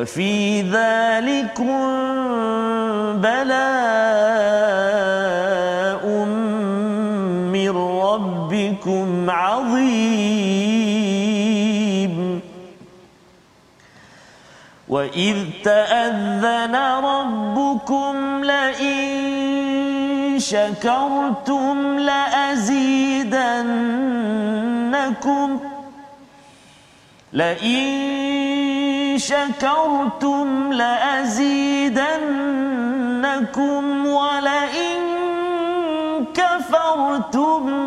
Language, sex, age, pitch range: Malayalam, male, 40-59, 220-280 Hz